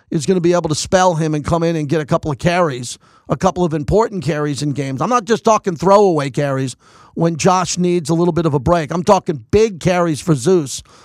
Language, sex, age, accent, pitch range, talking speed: English, male, 40-59, American, 150-195 Hz, 245 wpm